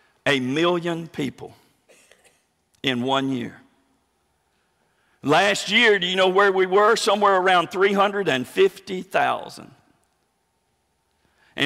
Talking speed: 95 wpm